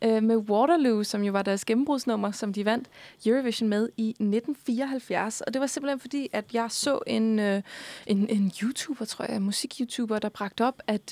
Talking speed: 190 wpm